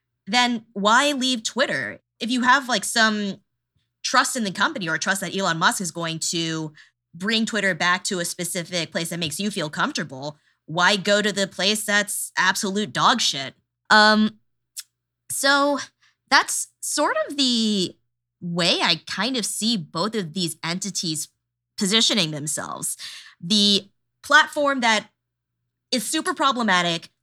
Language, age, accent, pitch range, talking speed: English, 20-39, American, 160-220 Hz, 145 wpm